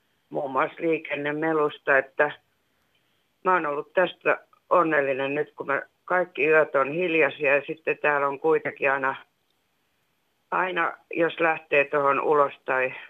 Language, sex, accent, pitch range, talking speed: Finnish, female, native, 140-160 Hz, 130 wpm